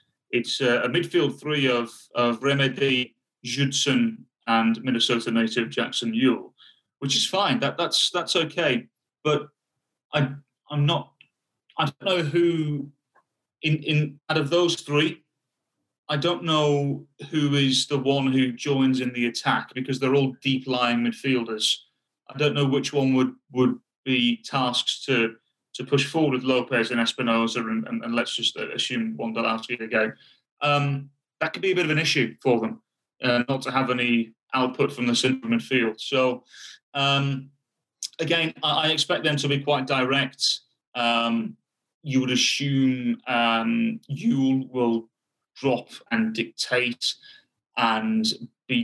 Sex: male